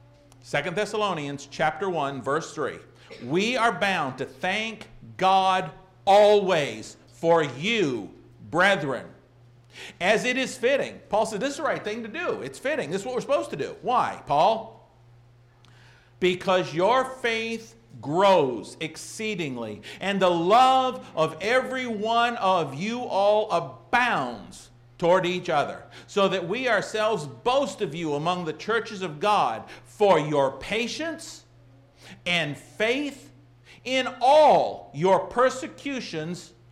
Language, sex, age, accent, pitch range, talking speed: English, male, 50-69, American, 135-215 Hz, 130 wpm